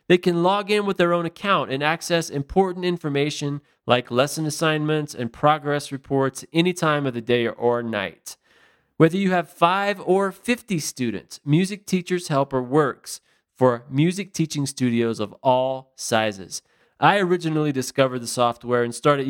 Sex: male